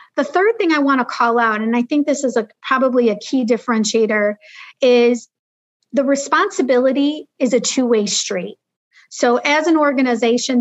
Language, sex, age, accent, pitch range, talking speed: English, female, 40-59, American, 225-270 Hz, 155 wpm